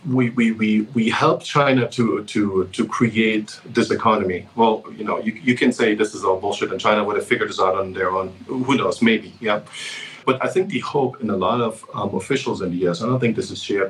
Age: 40-59